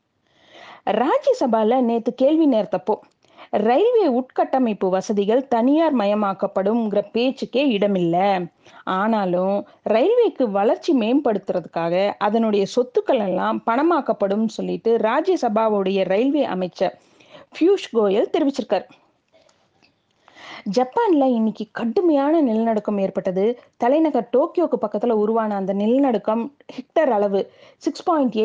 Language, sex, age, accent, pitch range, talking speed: Tamil, female, 30-49, native, 205-290 Hz, 80 wpm